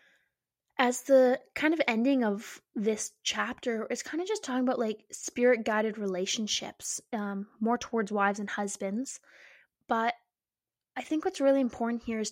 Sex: female